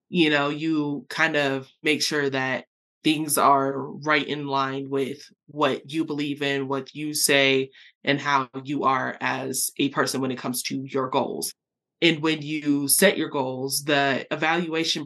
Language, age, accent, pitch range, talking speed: English, 20-39, American, 140-165 Hz, 165 wpm